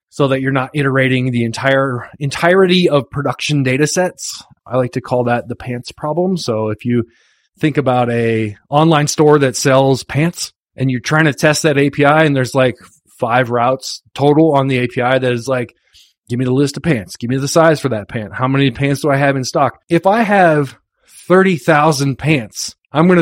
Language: English